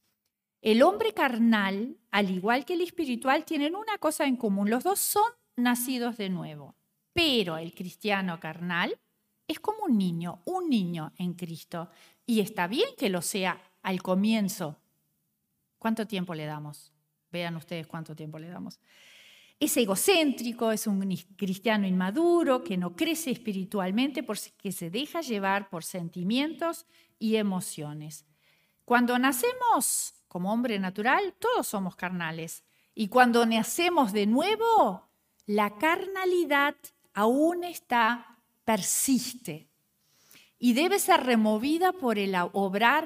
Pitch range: 185-270 Hz